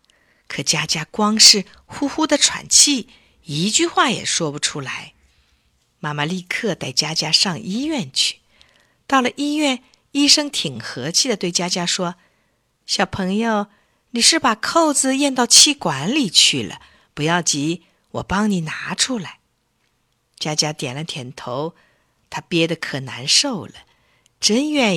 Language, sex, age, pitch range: Chinese, female, 50-69, 150-230 Hz